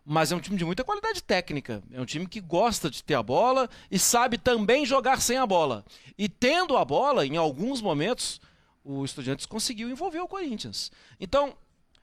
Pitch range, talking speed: 160-240 Hz, 190 wpm